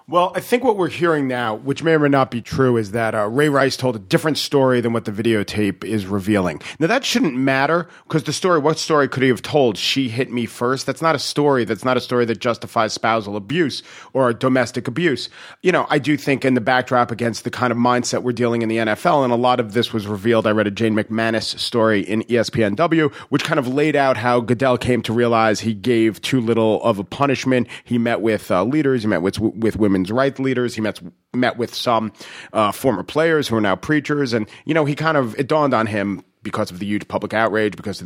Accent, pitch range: American, 110-135 Hz